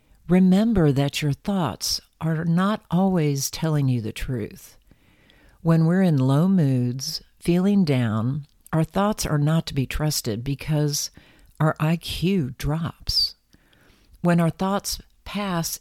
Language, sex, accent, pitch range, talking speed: English, female, American, 130-170 Hz, 125 wpm